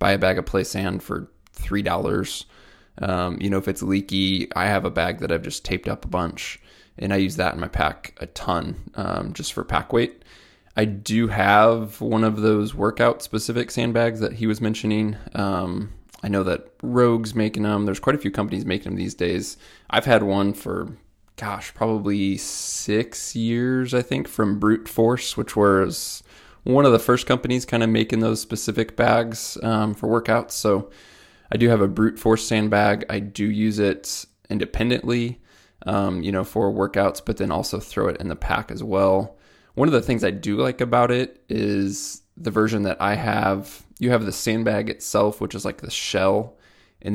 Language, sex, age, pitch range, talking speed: English, male, 20-39, 95-115 Hz, 190 wpm